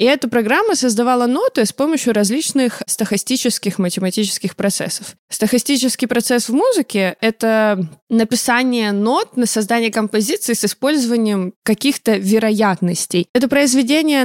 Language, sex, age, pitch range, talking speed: Russian, female, 20-39, 200-245 Hz, 120 wpm